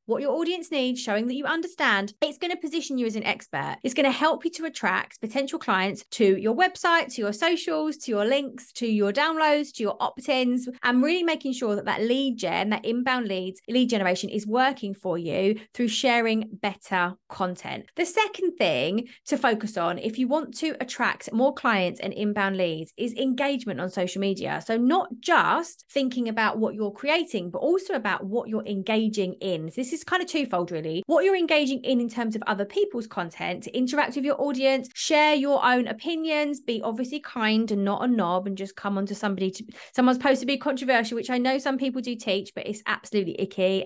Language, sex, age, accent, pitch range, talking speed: English, female, 30-49, British, 205-280 Hz, 210 wpm